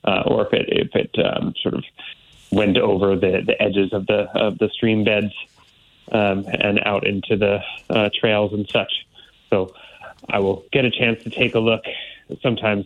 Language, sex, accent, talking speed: English, male, American, 185 wpm